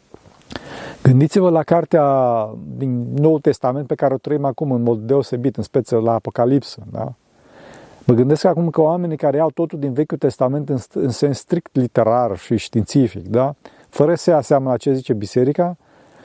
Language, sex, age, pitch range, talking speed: Romanian, male, 40-59, 125-155 Hz, 165 wpm